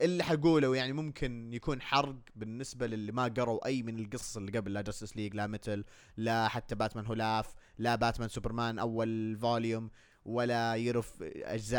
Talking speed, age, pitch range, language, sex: 165 wpm, 20-39, 110-130 Hz, Arabic, male